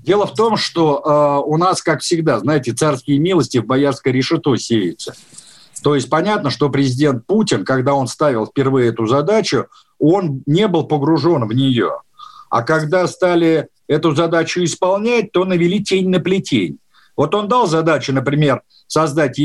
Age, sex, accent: 50-69, male, native